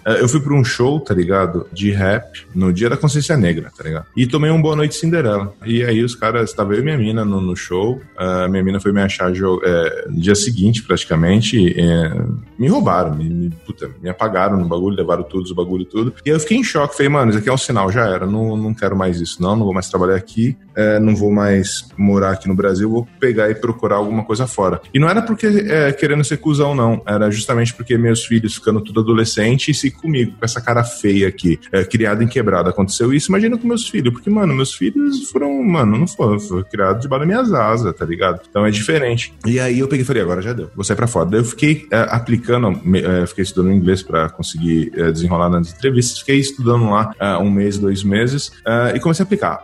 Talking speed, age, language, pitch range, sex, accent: 230 wpm, 20-39, Portuguese, 95-135 Hz, male, Brazilian